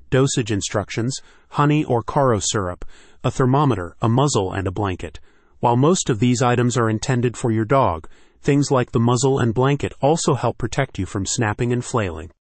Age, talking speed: 30-49, 180 wpm